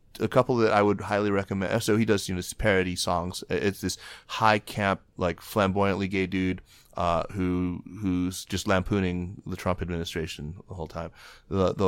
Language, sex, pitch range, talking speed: English, male, 90-105 Hz, 170 wpm